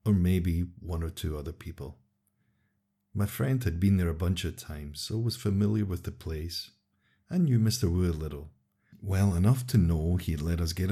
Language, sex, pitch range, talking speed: English, male, 85-100 Hz, 200 wpm